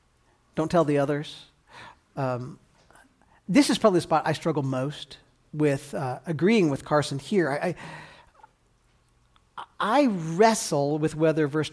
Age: 40-59